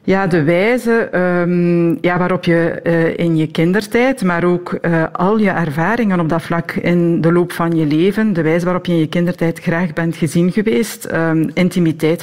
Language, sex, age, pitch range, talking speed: Dutch, female, 50-69, 160-185 Hz, 190 wpm